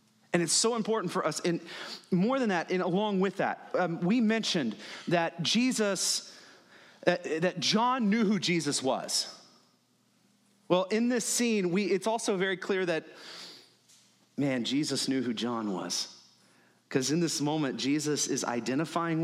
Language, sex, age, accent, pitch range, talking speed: English, male, 30-49, American, 140-195 Hz, 150 wpm